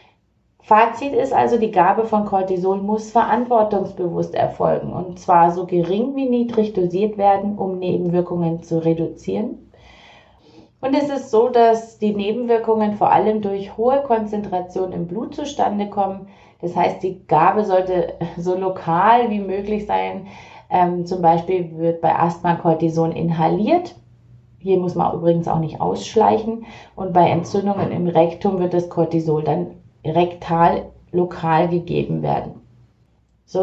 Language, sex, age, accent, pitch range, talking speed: German, female, 30-49, German, 170-210 Hz, 135 wpm